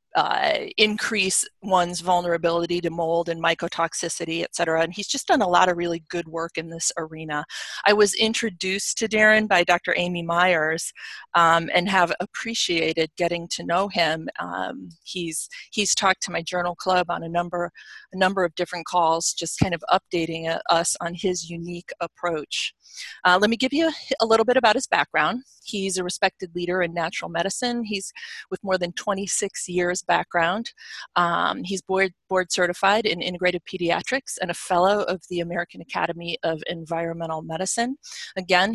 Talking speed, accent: 170 wpm, American